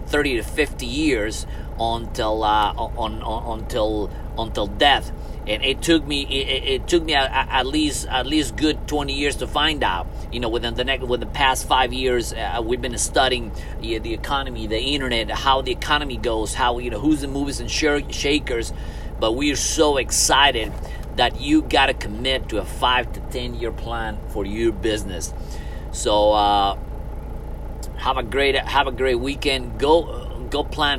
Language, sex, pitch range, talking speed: English, male, 110-135 Hz, 180 wpm